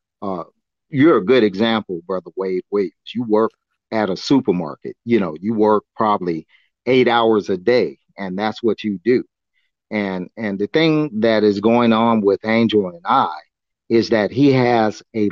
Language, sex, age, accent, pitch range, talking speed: English, male, 40-59, American, 100-120 Hz, 170 wpm